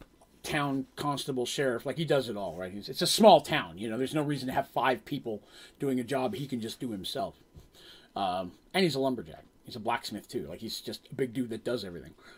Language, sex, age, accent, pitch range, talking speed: English, male, 30-49, American, 130-165 Hz, 235 wpm